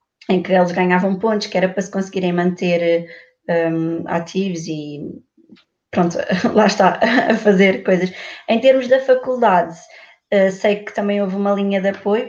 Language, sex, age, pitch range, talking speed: Portuguese, female, 20-39, 180-205 Hz, 150 wpm